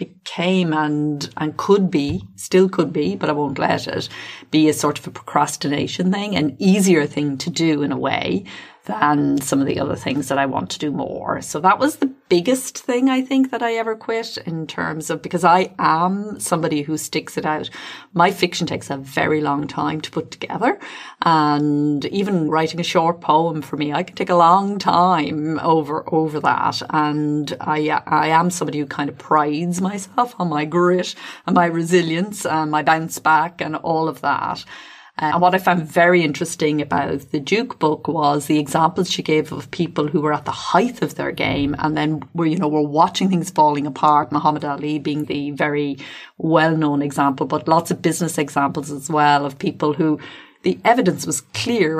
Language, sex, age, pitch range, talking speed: English, female, 30-49, 150-175 Hz, 195 wpm